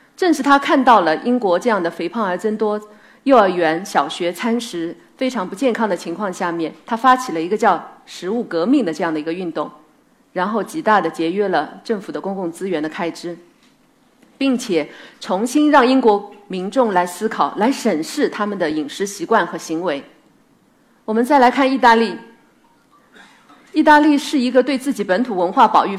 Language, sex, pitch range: Chinese, female, 175-265 Hz